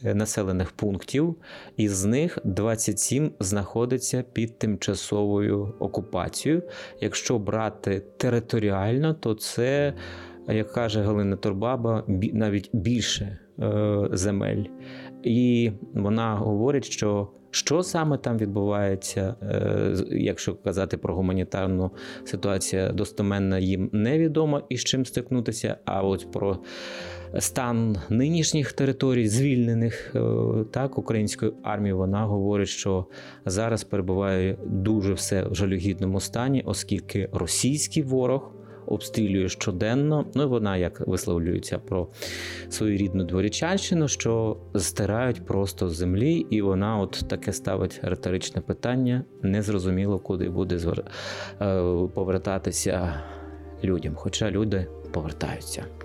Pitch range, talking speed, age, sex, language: 95-115 Hz, 105 wpm, 30-49, male, Ukrainian